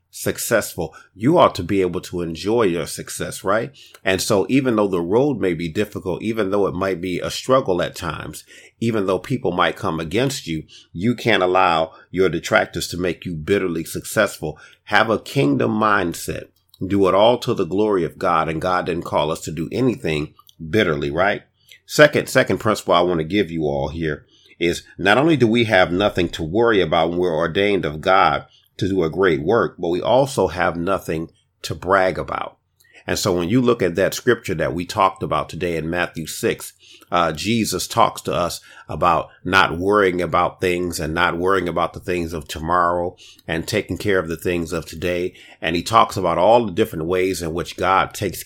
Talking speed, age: 200 wpm, 40-59